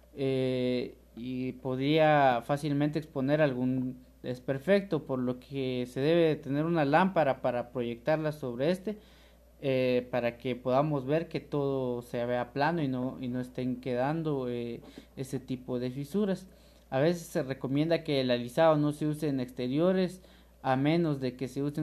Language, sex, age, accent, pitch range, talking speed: Spanish, male, 30-49, Mexican, 125-155 Hz, 155 wpm